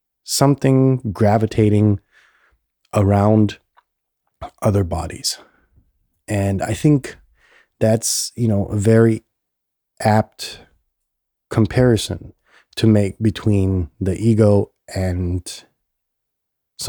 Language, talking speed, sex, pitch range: English, 80 wpm, male, 95-120 Hz